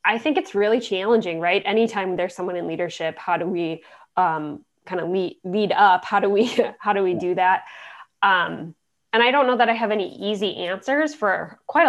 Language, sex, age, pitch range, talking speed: English, female, 10-29, 170-210 Hz, 205 wpm